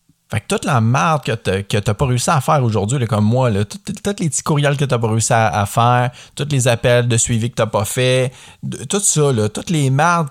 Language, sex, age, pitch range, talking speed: French, male, 30-49, 100-130 Hz, 255 wpm